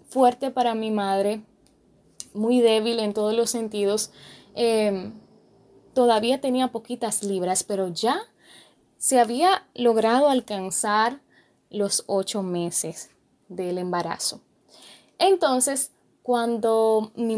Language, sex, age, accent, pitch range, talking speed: Spanish, female, 10-29, American, 200-250 Hz, 100 wpm